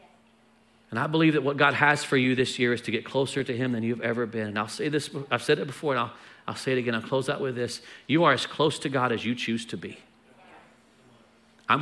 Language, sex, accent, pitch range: English, male, American, 125-160 Hz